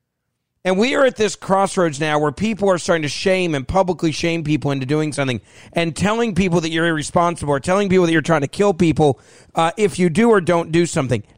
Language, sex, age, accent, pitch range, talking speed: English, male, 40-59, American, 140-180 Hz, 225 wpm